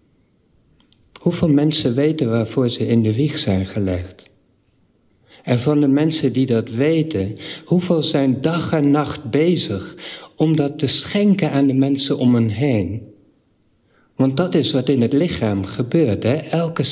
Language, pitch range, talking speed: Dutch, 110-150 Hz, 150 wpm